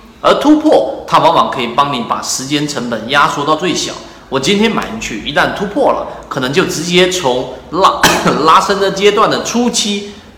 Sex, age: male, 30-49